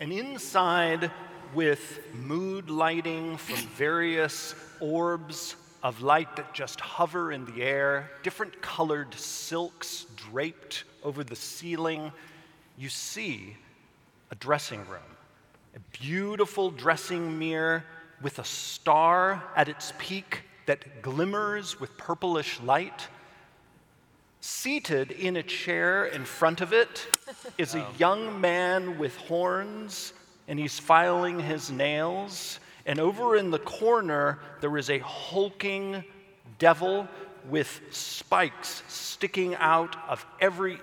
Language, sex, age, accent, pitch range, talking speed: English, male, 40-59, American, 150-185 Hz, 115 wpm